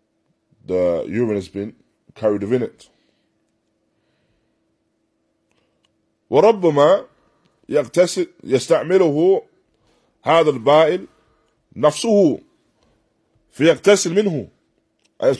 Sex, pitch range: male, 110-175 Hz